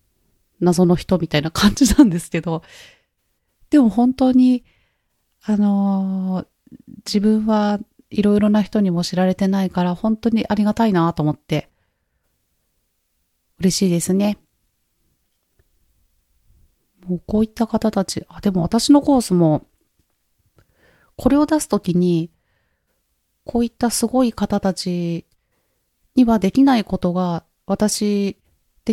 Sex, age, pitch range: female, 30-49, 170-230 Hz